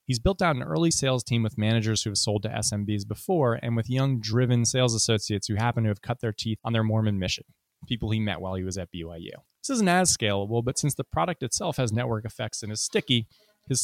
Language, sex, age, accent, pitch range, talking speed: English, male, 20-39, American, 105-130 Hz, 245 wpm